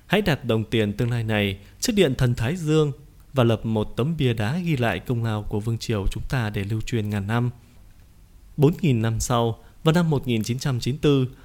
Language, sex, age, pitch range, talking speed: Vietnamese, male, 20-39, 110-140 Hz, 200 wpm